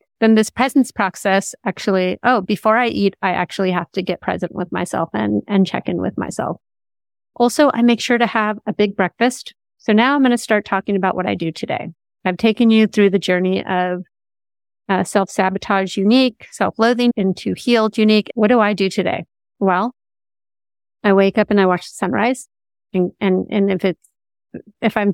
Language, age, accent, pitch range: English, 30-49, American, 185-215 Hz